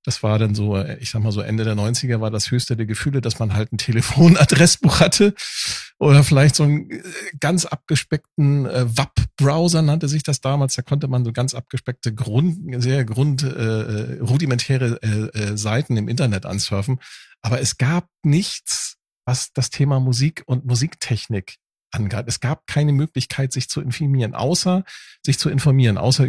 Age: 40-59